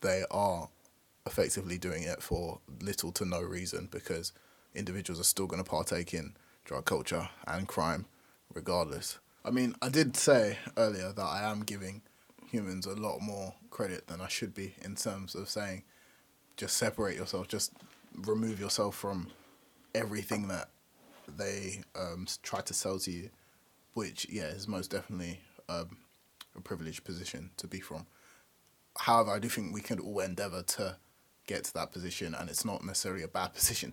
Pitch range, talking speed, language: 95-110 Hz, 165 wpm, English